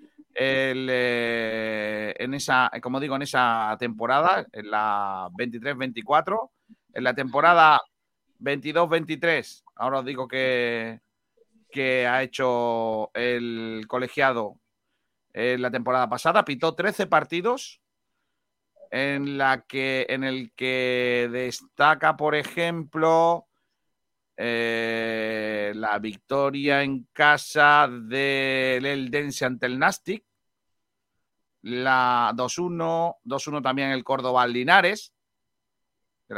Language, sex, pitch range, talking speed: Spanish, male, 125-160 Hz, 95 wpm